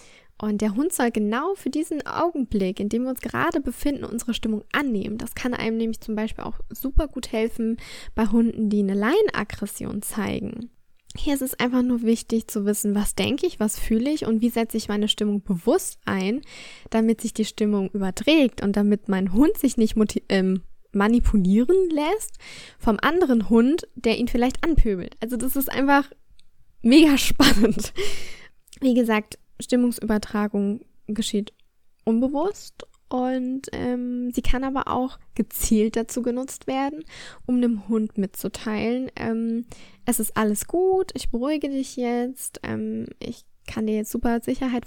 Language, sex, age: German, female, 10-29